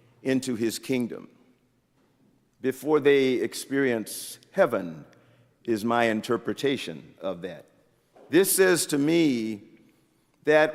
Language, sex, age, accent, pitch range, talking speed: English, male, 50-69, American, 130-155 Hz, 95 wpm